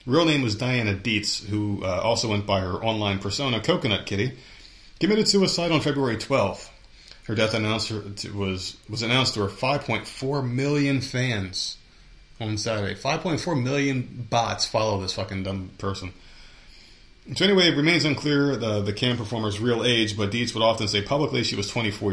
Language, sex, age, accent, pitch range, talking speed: English, male, 30-49, American, 100-135 Hz, 170 wpm